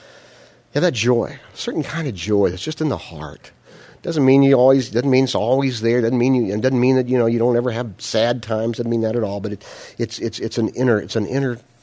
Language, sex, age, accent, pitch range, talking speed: English, male, 50-69, American, 105-140 Hz, 310 wpm